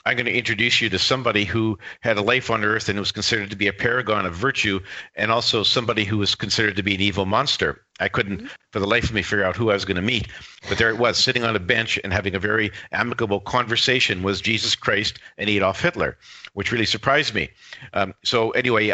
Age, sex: 50-69, male